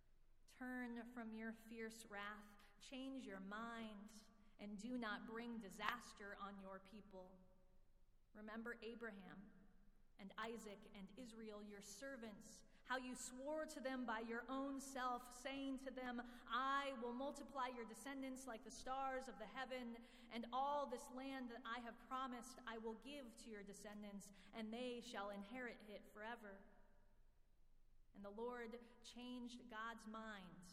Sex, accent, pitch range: female, American, 195-240 Hz